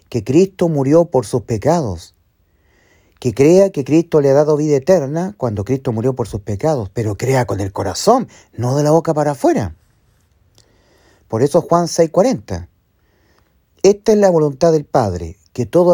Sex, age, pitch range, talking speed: male, 40-59, 105-170 Hz, 170 wpm